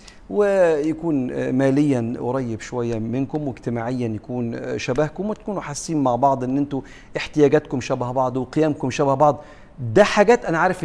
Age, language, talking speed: 50-69, Arabic, 135 wpm